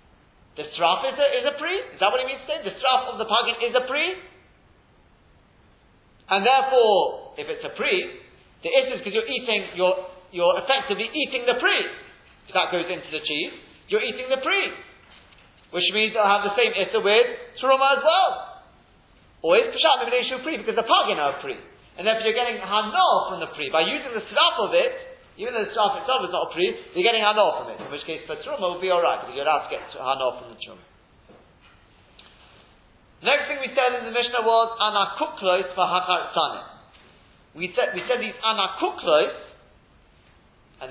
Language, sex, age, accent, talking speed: English, male, 40-59, British, 200 wpm